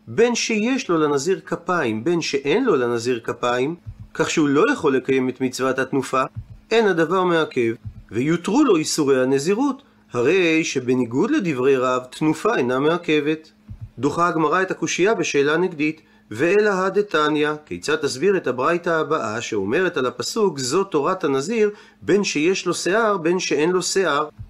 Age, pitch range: 40-59, 130-205 Hz